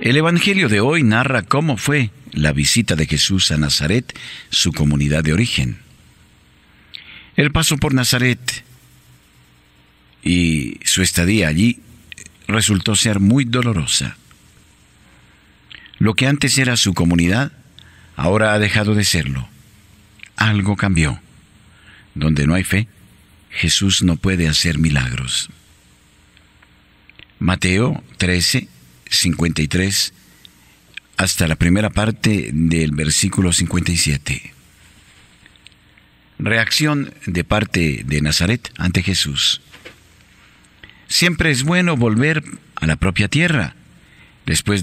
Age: 50-69